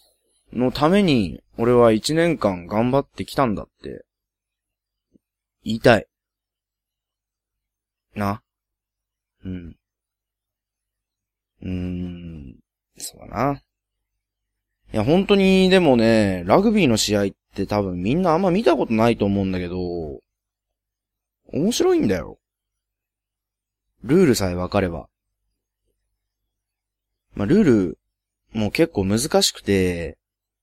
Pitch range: 100-125 Hz